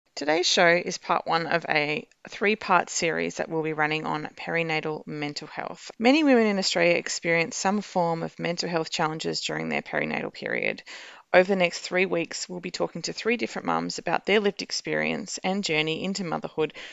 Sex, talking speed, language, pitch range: female, 185 wpm, English, 160-190 Hz